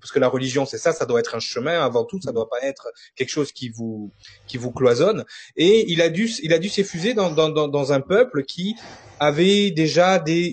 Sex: male